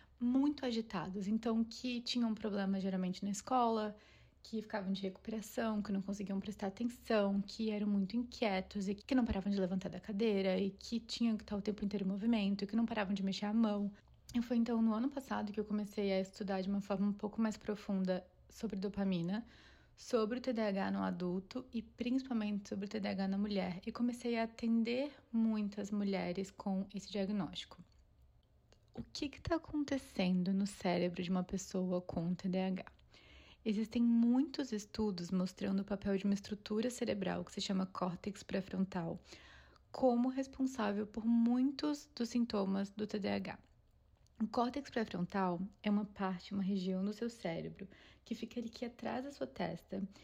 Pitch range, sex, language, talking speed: 195-235 Hz, female, Portuguese, 170 wpm